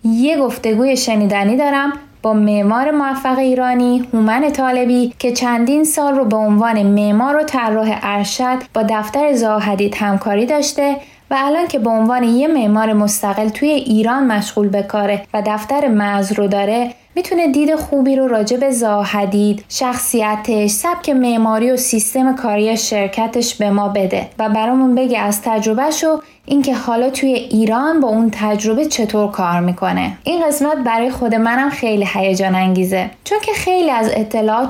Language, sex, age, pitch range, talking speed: Persian, female, 20-39, 210-275 Hz, 150 wpm